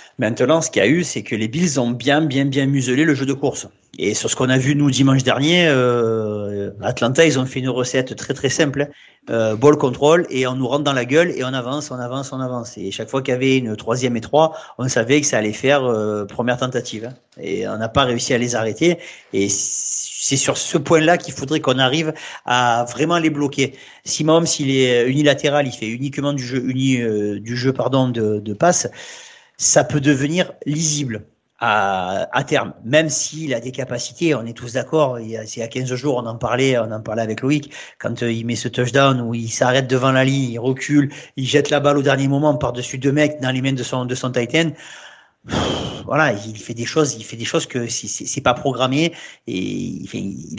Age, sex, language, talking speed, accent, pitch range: 40-59, male, French, 230 wpm, French, 120-145 Hz